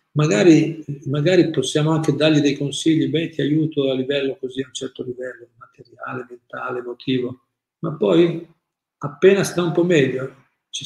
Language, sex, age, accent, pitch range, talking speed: Italian, male, 50-69, native, 135-160 Hz, 155 wpm